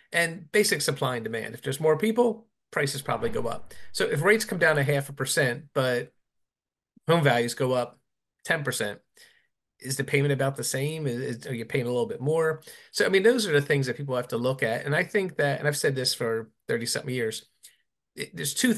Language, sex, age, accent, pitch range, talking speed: English, male, 30-49, American, 125-150 Hz, 225 wpm